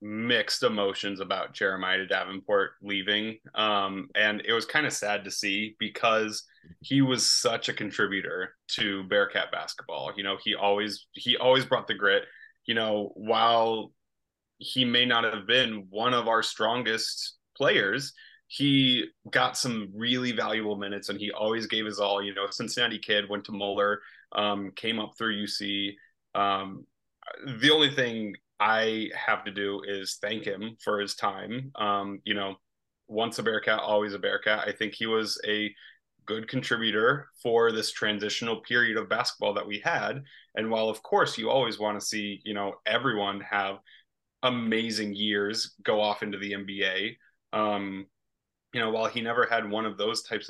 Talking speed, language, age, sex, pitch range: 165 wpm, English, 20-39, male, 100-110 Hz